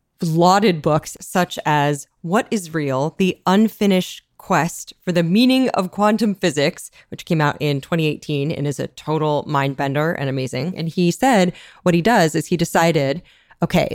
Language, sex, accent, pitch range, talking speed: English, female, American, 150-205 Hz, 165 wpm